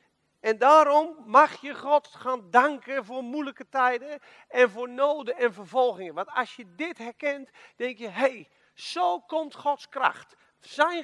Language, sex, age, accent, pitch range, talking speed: Dutch, male, 40-59, Dutch, 190-265 Hz, 160 wpm